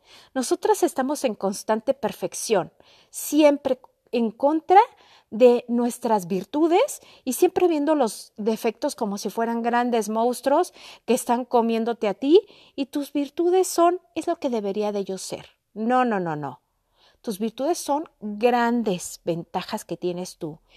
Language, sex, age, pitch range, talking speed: Spanish, female, 40-59, 205-275 Hz, 140 wpm